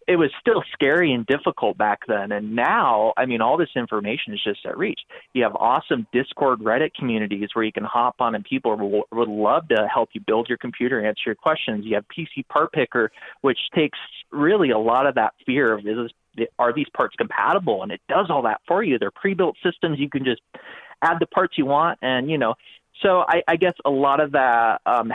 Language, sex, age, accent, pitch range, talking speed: English, male, 30-49, American, 110-135 Hz, 220 wpm